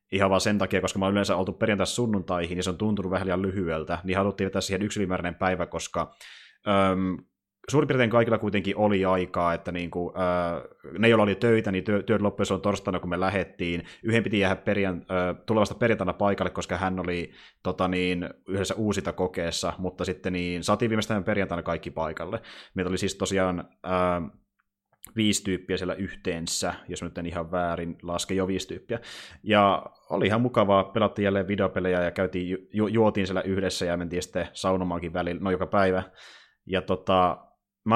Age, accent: 20-39, native